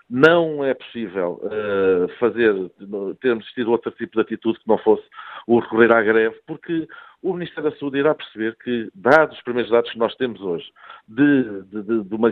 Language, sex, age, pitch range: Portuguese, male, 50-69, 110-140 Hz